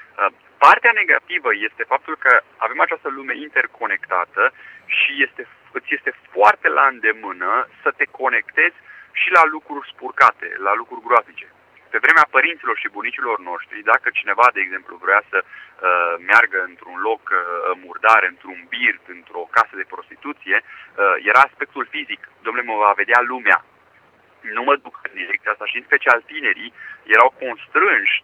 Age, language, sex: 30-49, Romanian, male